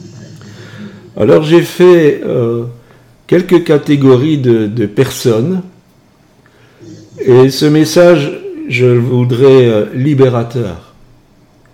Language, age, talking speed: French, 50-69, 80 wpm